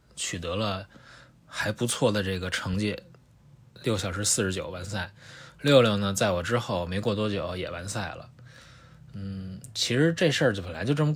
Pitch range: 100-125 Hz